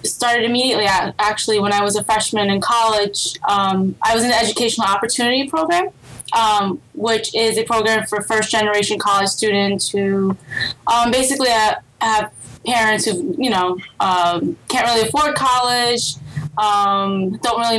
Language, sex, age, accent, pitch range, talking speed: English, female, 10-29, American, 195-230 Hz, 150 wpm